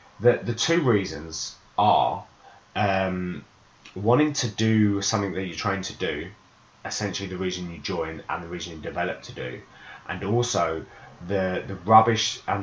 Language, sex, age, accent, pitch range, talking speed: English, male, 20-39, British, 95-110 Hz, 155 wpm